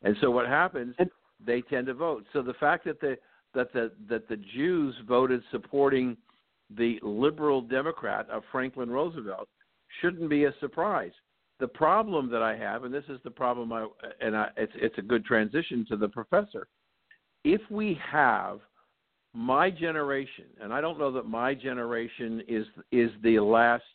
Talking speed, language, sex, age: 170 wpm, English, male, 60-79